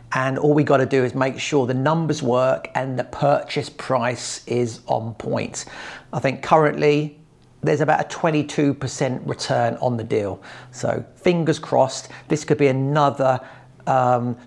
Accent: British